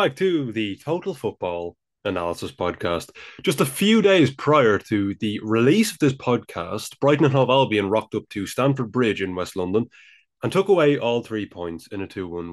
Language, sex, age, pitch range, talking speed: English, male, 20-39, 100-145 Hz, 185 wpm